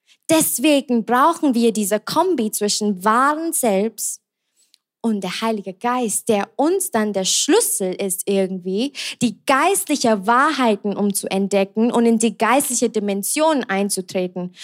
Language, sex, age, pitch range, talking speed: German, female, 20-39, 205-270 Hz, 125 wpm